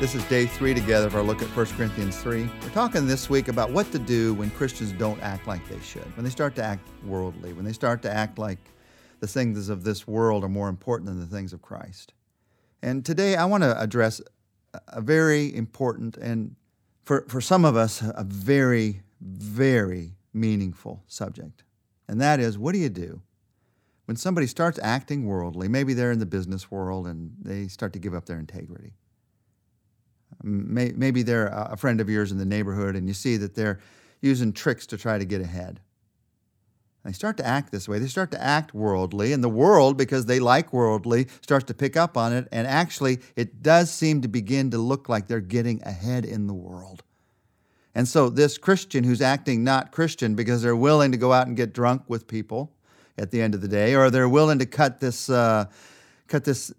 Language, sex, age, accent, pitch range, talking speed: English, male, 50-69, American, 105-130 Hz, 200 wpm